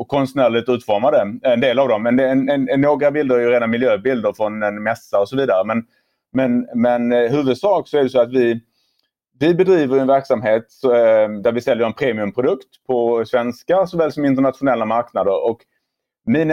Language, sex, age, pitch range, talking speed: Swedish, male, 30-49, 115-135 Hz, 190 wpm